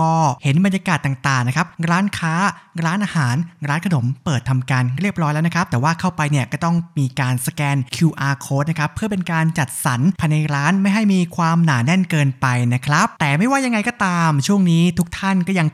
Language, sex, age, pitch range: Thai, male, 20-39, 140-190 Hz